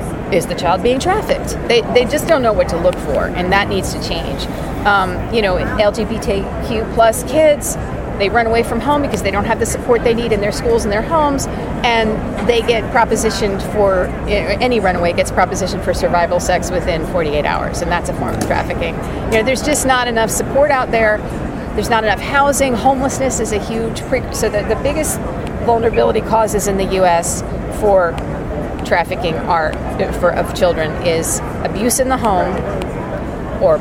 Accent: American